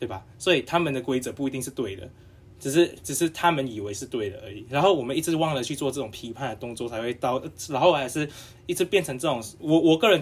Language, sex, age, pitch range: Chinese, male, 20-39, 130-200 Hz